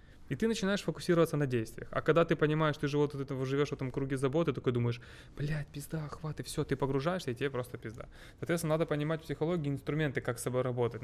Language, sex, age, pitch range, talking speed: Ukrainian, male, 20-39, 125-150 Hz, 230 wpm